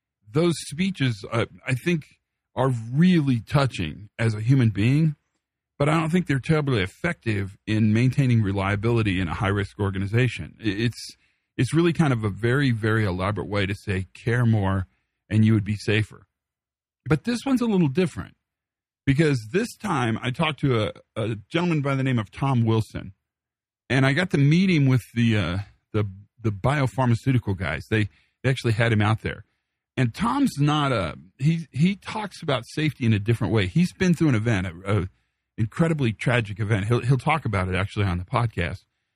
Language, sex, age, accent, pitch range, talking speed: English, male, 40-59, American, 105-145 Hz, 180 wpm